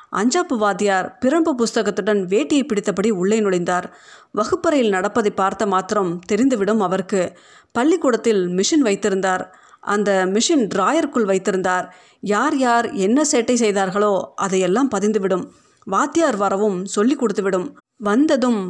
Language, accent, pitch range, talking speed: Tamil, native, 190-250 Hz, 105 wpm